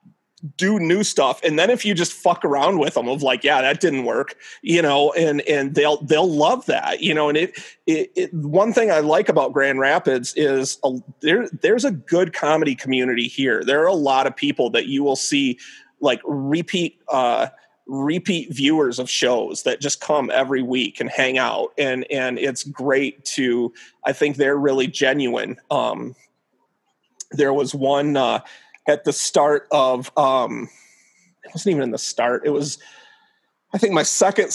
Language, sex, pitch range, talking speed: English, male, 135-165 Hz, 180 wpm